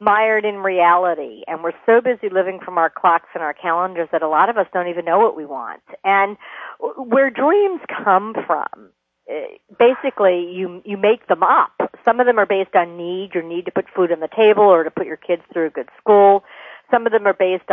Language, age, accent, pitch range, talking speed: English, 50-69, American, 170-215 Hz, 220 wpm